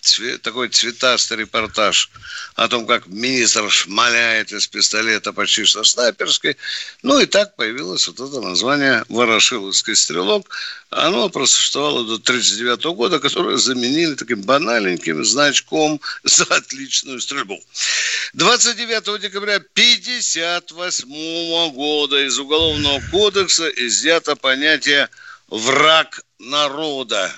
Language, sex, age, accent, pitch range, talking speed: Russian, male, 60-79, native, 130-200 Hz, 100 wpm